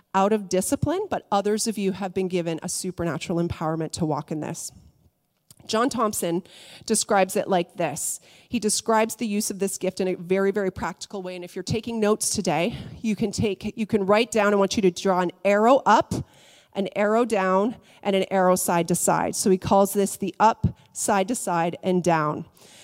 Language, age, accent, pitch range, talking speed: English, 30-49, American, 185-225 Hz, 200 wpm